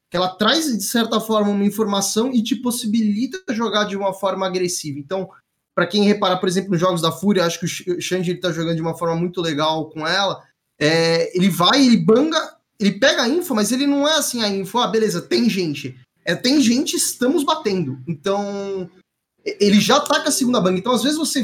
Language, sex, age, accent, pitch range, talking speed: Portuguese, male, 20-39, Brazilian, 180-245 Hz, 210 wpm